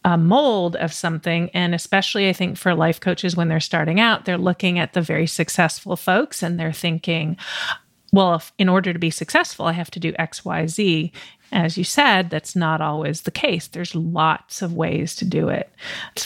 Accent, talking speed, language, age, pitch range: American, 205 wpm, English, 30-49, 165-190 Hz